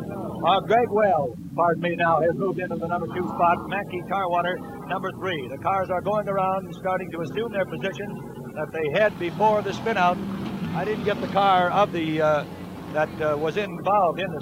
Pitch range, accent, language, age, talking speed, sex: 180-225 Hz, American, English, 60-79, 195 wpm, male